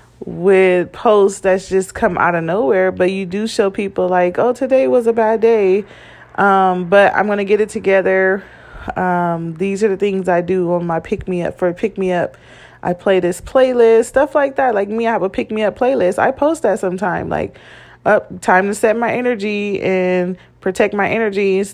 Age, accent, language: 30-49, American, English